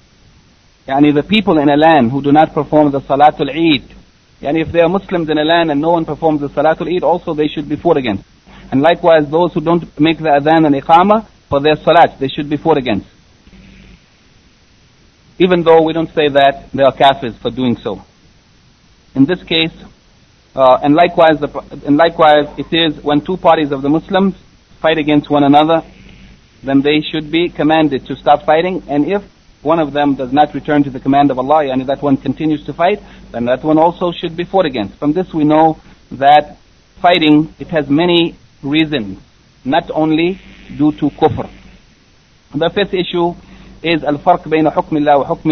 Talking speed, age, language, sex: 190 wpm, 60-79, English, male